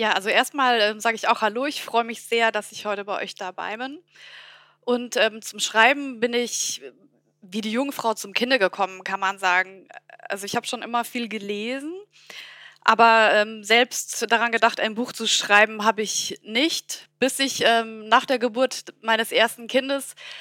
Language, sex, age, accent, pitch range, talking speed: German, female, 20-39, German, 220-260 Hz, 180 wpm